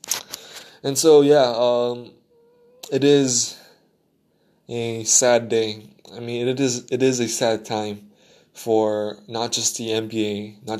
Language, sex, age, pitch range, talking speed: English, male, 20-39, 110-125 Hz, 140 wpm